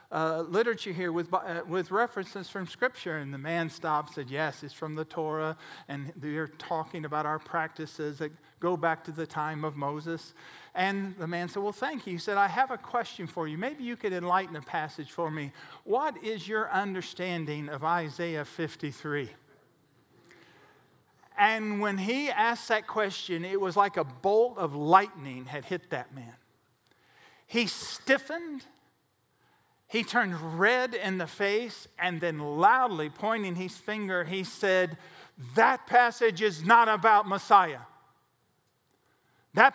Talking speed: 155 wpm